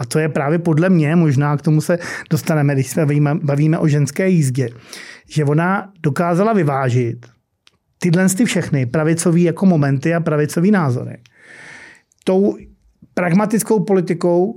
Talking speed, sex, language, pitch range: 135 wpm, male, Czech, 155-190 Hz